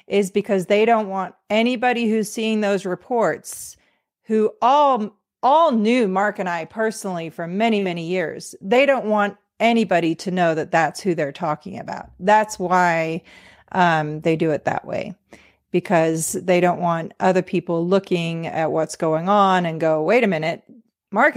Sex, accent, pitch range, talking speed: female, American, 175-225 Hz, 165 wpm